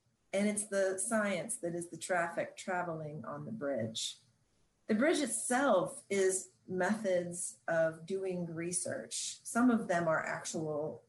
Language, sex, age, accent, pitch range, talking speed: English, female, 30-49, American, 160-205 Hz, 135 wpm